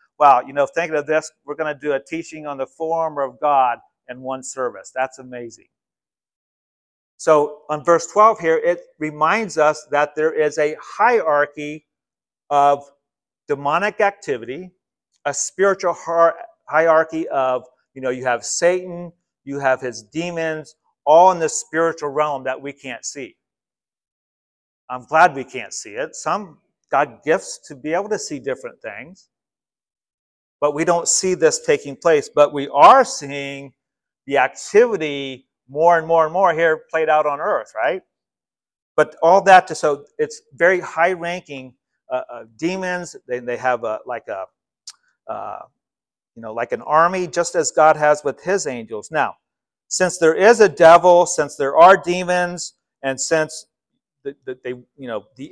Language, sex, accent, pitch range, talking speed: English, male, American, 140-175 Hz, 160 wpm